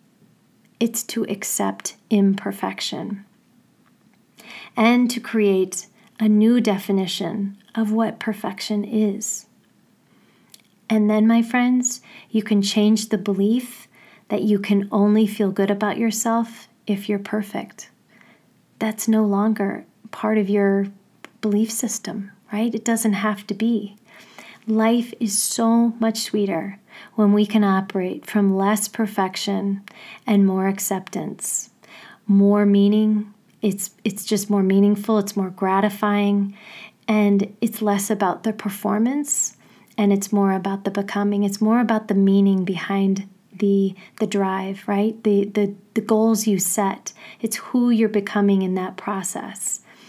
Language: English